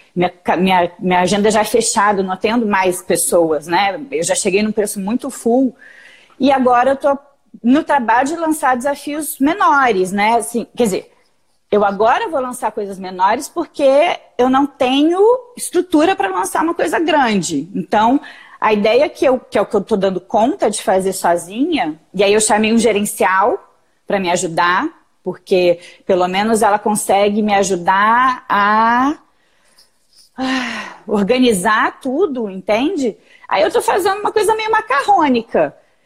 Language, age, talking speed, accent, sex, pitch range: Portuguese, 30-49, 150 wpm, Brazilian, female, 195-280 Hz